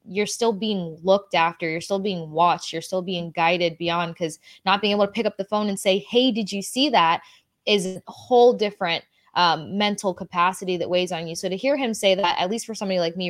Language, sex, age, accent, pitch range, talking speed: English, female, 20-39, American, 180-215 Hz, 240 wpm